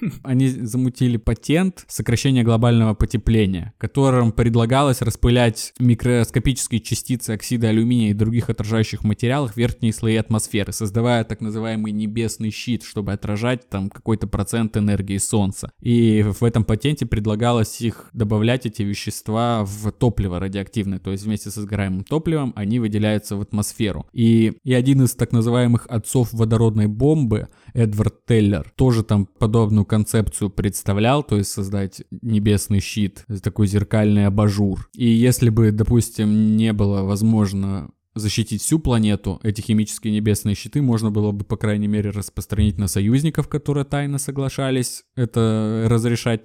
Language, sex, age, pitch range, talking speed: Russian, male, 20-39, 105-120 Hz, 140 wpm